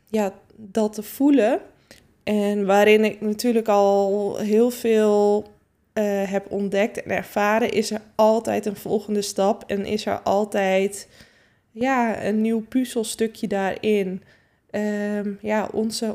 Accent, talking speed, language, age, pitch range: Dutch, 120 wpm, Dutch, 20-39, 195-215 Hz